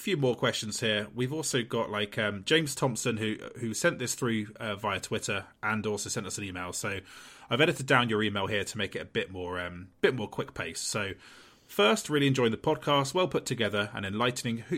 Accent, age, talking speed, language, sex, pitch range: British, 30-49, 225 wpm, English, male, 100-130 Hz